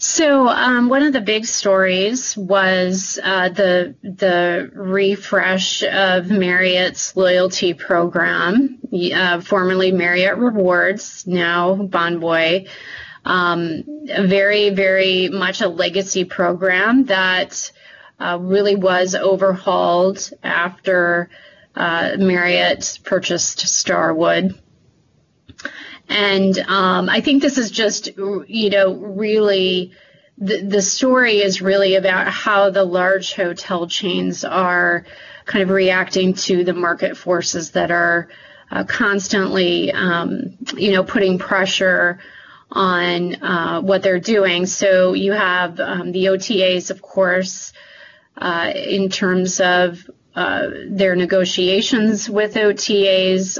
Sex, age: female, 30-49